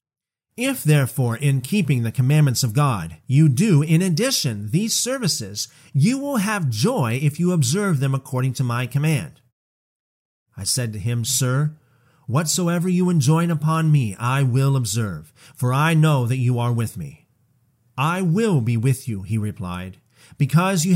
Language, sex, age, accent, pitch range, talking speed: English, male, 40-59, American, 120-160 Hz, 160 wpm